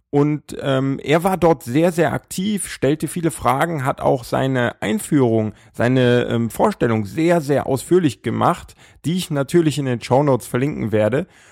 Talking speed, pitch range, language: 160 wpm, 125-160 Hz, German